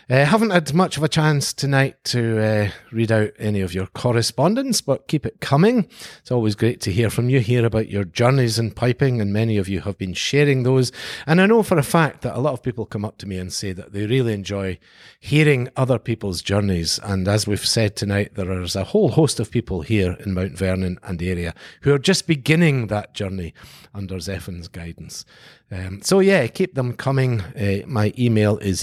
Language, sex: English, male